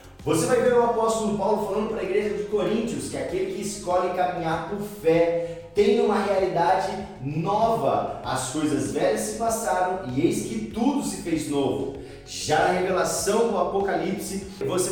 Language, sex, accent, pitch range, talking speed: Portuguese, male, Brazilian, 185-230 Hz, 165 wpm